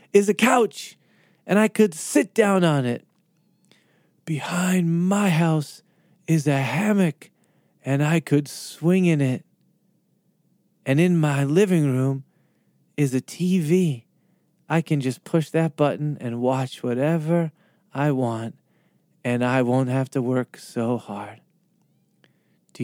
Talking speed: 130 wpm